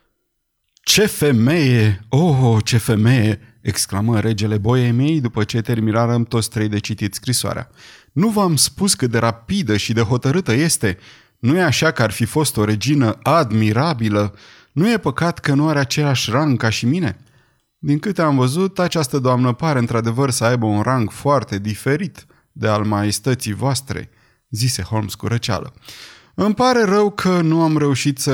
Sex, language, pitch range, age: male, Romanian, 110-145 Hz, 30-49